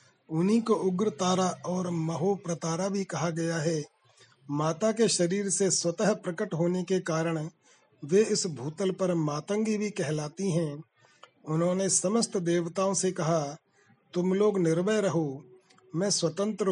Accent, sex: native, male